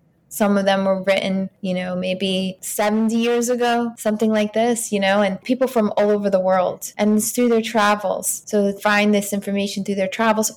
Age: 20-39